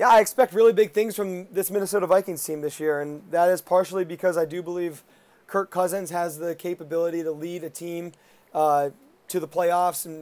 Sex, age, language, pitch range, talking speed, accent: male, 30-49, English, 165-190 Hz, 205 wpm, American